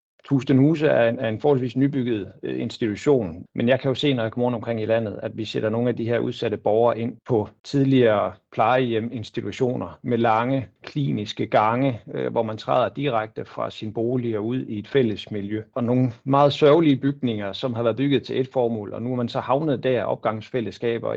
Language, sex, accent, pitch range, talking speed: Danish, male, native, 110-130 Hz, 185 wpm